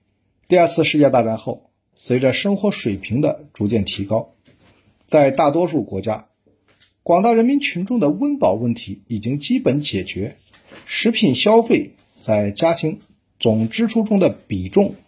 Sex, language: male, Chinese